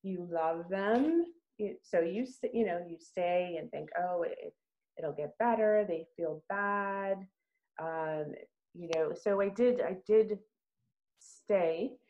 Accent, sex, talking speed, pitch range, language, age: American, female, 140 wpm, 160-200 Hz, English, 30-49